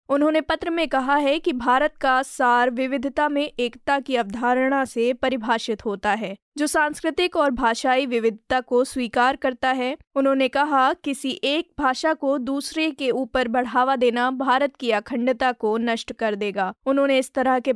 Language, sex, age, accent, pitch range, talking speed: Hindi, female, 20-39, native, 245-285 Hz, 165 wpm